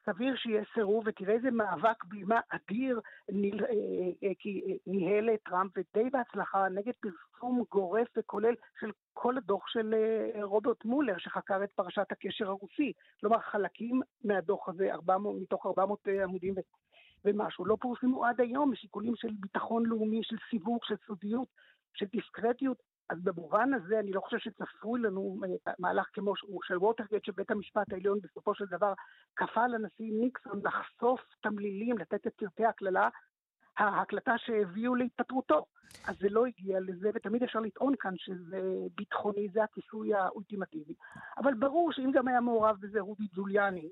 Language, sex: Hebrew, male